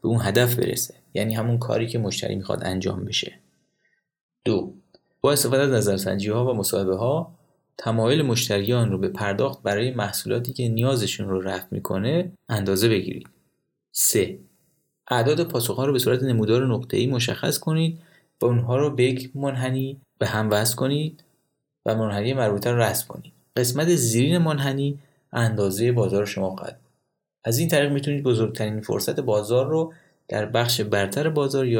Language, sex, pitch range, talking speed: Persian, male, 105-140 Hz, 140 wpm